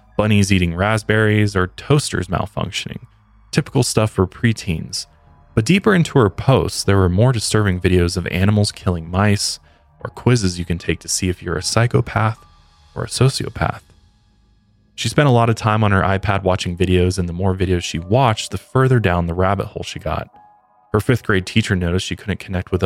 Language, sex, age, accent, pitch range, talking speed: English, male, 20-39, American, 90-110 Hz, 190 wpm